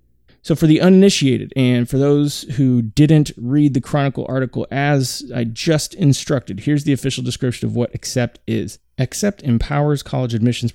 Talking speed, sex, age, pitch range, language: 160 wpm, male, 30-49, 110-140 Hz, English